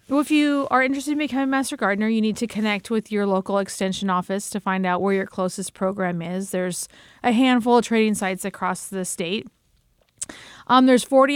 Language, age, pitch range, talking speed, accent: English, 40-59, 195-235 Hz, 205 wpm, American